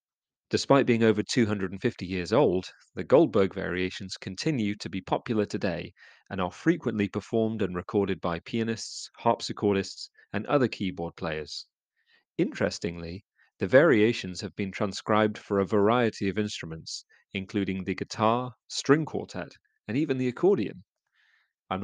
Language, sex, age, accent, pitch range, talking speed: English, male, 40-59, British, 95-115 Hz, 130 wpm